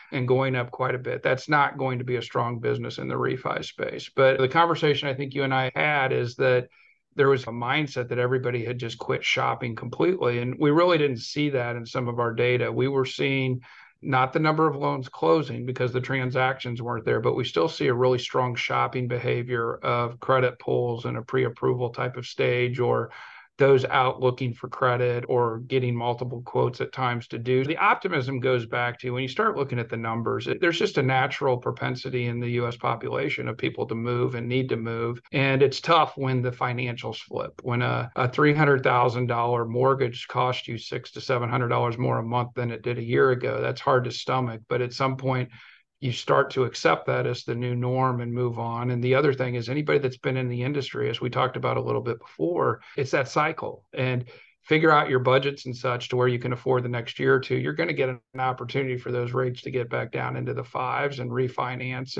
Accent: American